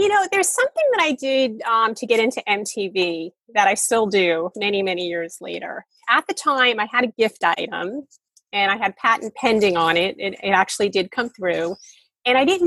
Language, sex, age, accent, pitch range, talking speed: English, female, 30-49, American, 190-260 Hz, 210 wpm